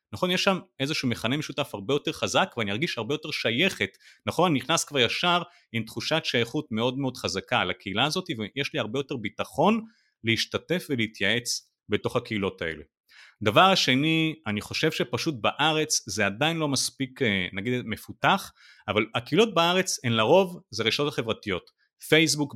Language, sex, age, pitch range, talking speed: Hebrew, male, 30-49, 115-160 Hz, 155 wpm